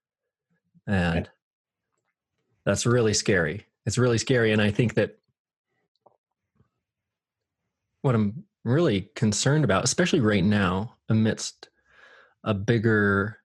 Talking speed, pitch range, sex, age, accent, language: 100 wpm, 100-120 Hz, male, 20-39, American, English